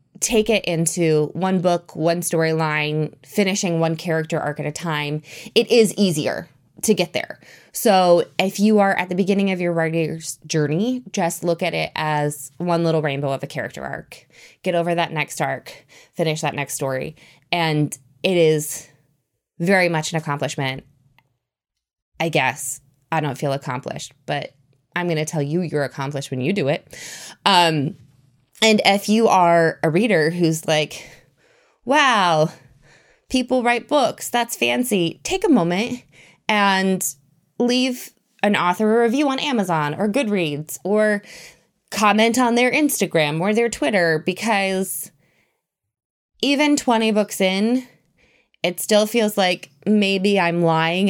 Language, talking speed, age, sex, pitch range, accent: English, 145 wpm, 20-39, female, 150-205 Hz, American